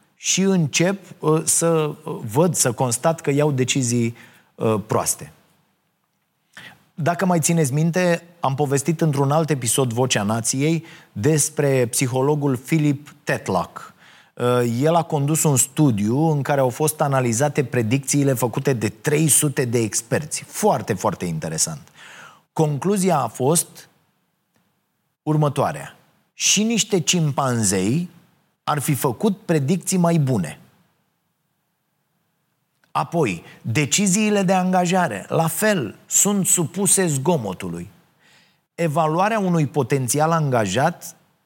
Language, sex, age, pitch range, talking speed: Romanian, male, 30-49, 135-175 Hz, 100 wpm